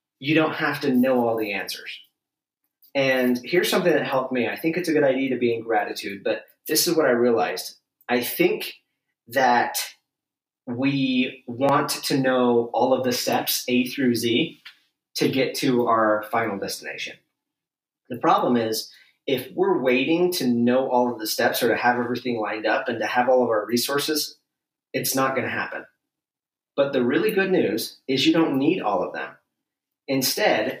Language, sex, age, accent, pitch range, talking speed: English, male, 30-49, American, 120-150 Hz, 180 wpm